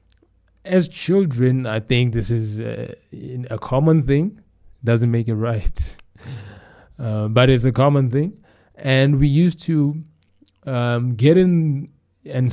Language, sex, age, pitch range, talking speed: English, male, 20-39, 120-155 Hz, 140 wpm